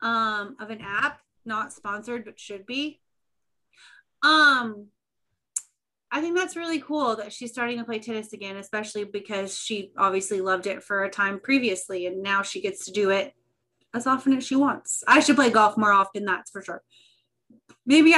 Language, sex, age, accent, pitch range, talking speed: English, female, 30-49, American, 210-295 Hz, 180 wpm